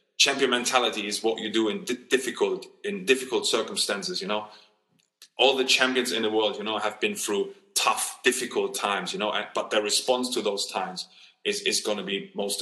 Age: 20-39